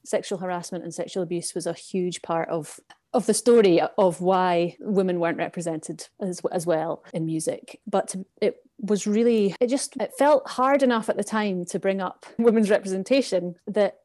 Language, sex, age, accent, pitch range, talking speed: English, female, 30-49, British, 175-205 Hz, 180 wpm